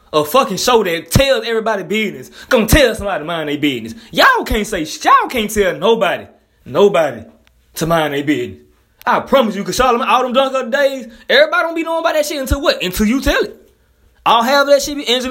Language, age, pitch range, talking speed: English, 20-39, 195-270 Hz, 210 wpm